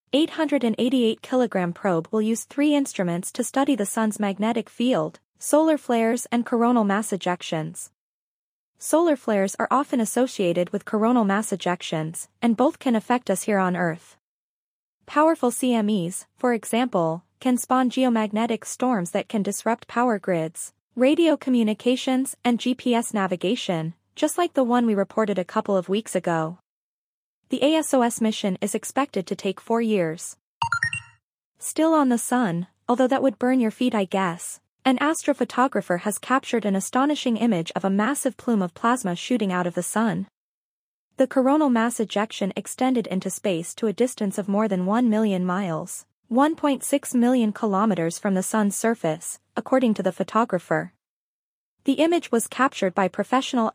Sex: female